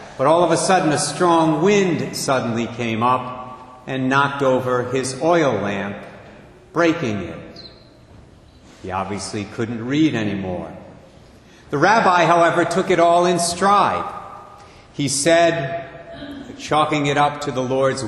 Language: English